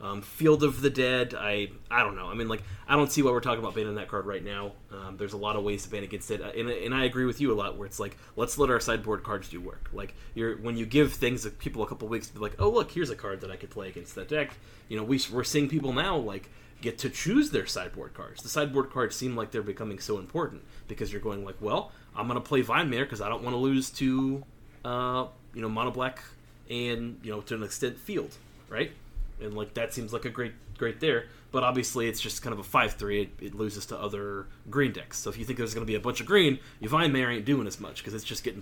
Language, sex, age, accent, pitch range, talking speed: English, male, 30-49, American, 105-130 Hz, 280 wpm